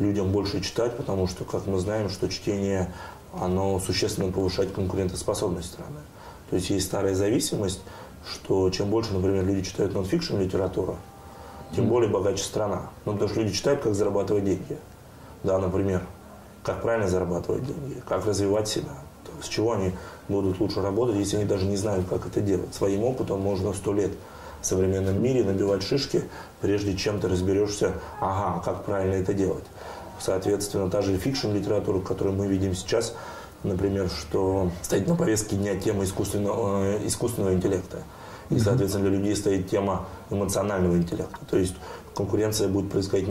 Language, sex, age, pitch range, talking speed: Russian, male, 30-49, 95-105 Hz, 160 wpm